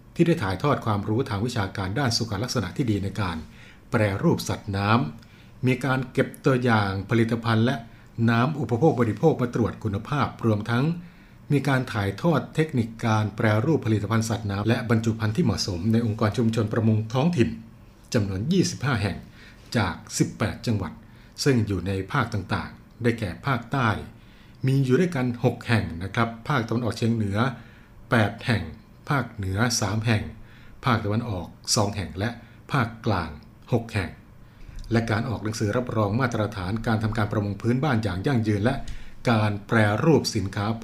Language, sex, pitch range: Thai, male, 105-120 Hz